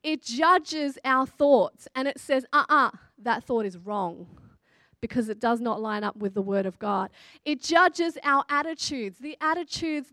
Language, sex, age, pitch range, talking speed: English, female, 30-49, 240-310 Hz, 180 wpm